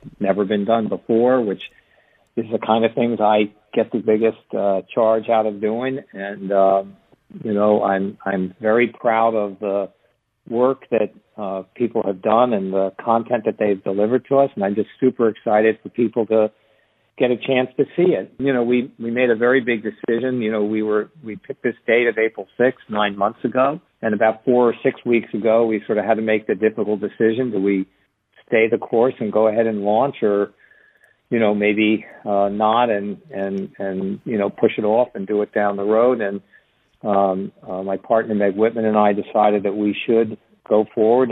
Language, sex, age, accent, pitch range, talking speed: English, male, 50-69, American, 100-115 Hz, 205 wpm